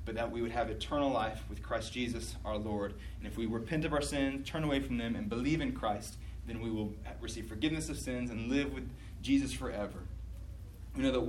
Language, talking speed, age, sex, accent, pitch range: English, 225 wpm, 30-49, male, American, 115-150 Hz